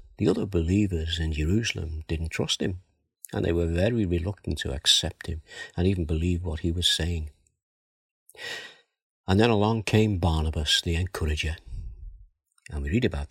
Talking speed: 155 wpm